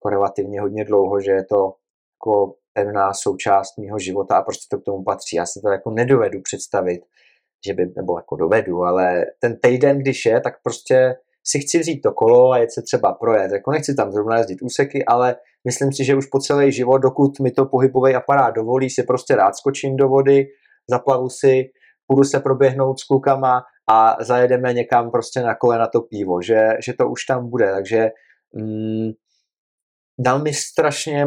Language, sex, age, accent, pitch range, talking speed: Czech, male, 20-39, native, 110-135 Hz, 190 wpm